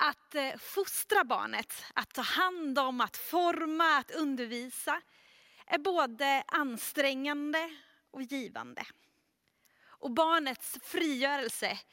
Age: 30-49